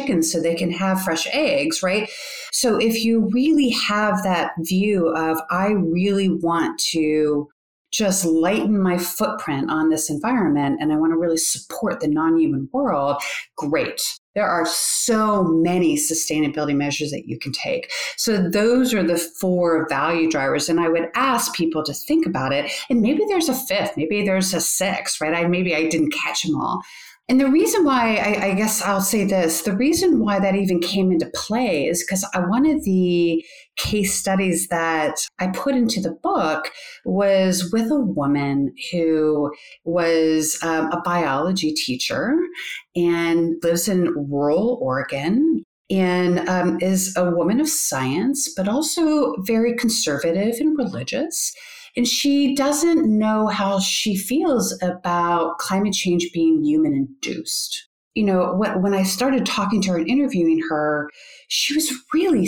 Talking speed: 160 wpm